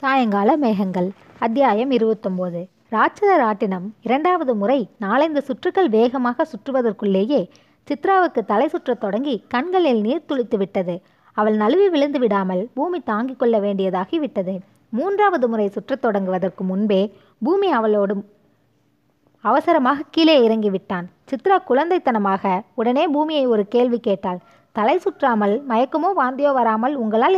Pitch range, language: 205-280 Hz, Tamil